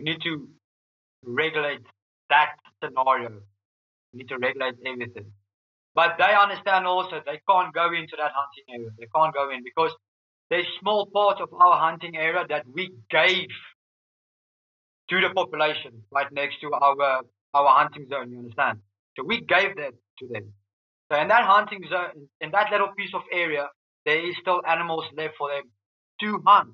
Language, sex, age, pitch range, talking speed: English, male, 30-49, 130-180 Hz, 170 wpm